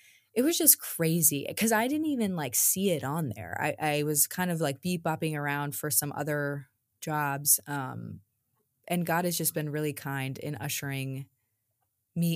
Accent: American